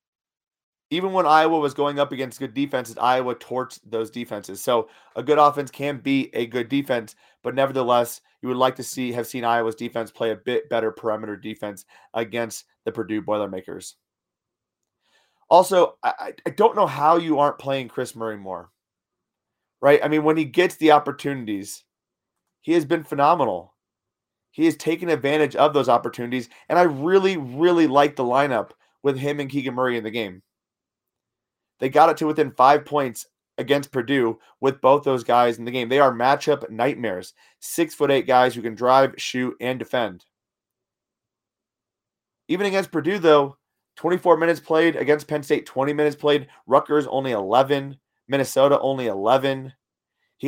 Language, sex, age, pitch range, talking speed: English, male, 30-49, 120-150 Hz, 165 wpm